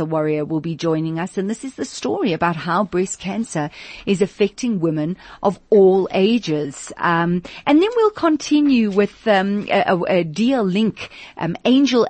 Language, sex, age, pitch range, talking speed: English, female, 40-59, 160-220 Hz, 170 wpm